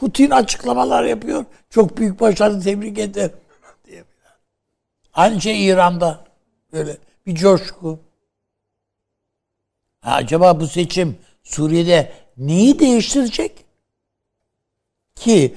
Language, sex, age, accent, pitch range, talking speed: Turkish, male, 60-79, native, 115-175 Hz, 85 wpm